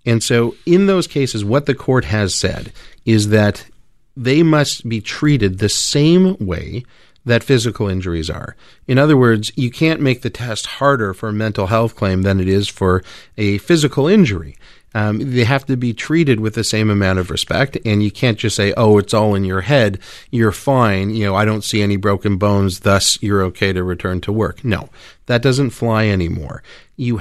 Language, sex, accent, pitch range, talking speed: English, male, American, 100-120 Hz, 200 wpm